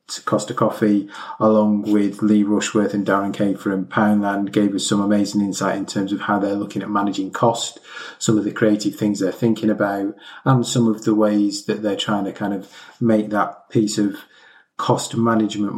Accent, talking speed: British, 190 wpm